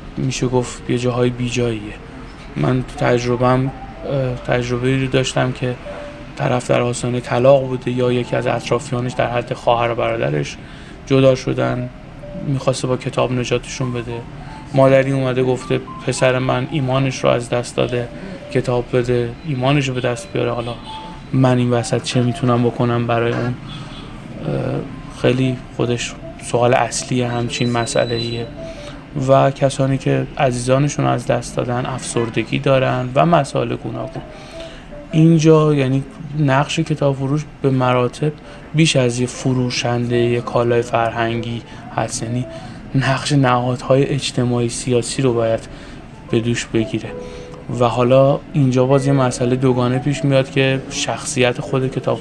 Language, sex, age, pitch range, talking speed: Persian, male, 20-39, 120-135 Hz, 130 wpm